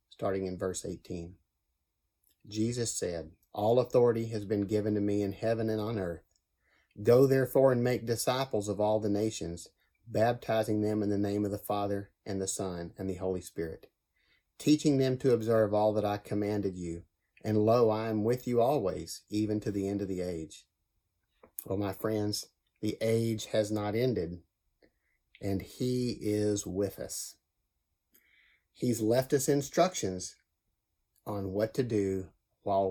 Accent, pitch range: American, 95-110 Hz